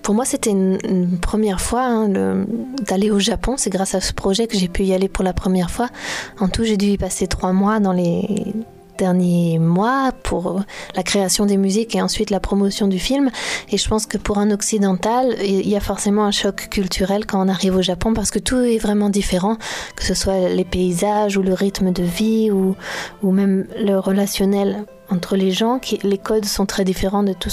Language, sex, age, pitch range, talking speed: French, female, 20-39, 190-215 Hz, 215 wpm